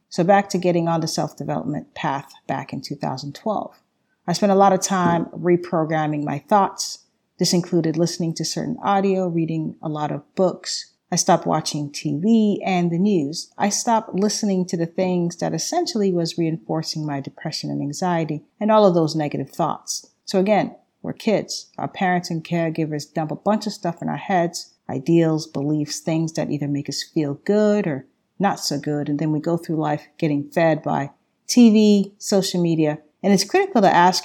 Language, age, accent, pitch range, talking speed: English, 40-59, American, 160-200 Hz, 180 wpm